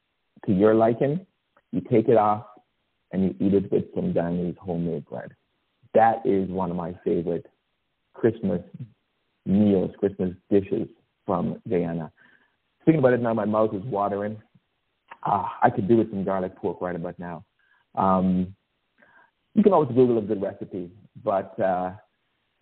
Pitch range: 95-115 Hz